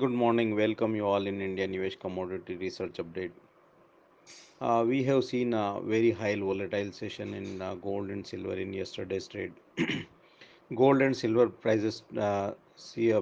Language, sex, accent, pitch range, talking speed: English, male, Indian, 100-115 Hz, 160 wpm